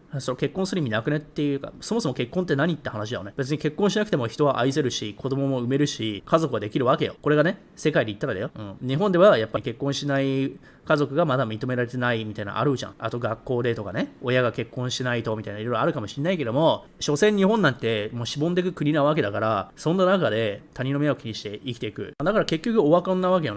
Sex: male